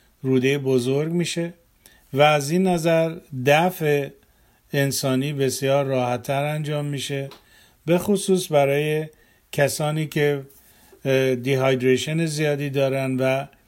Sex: male